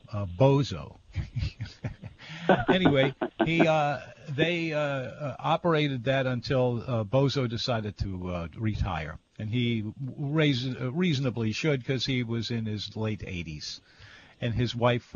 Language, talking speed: English, 125 wpm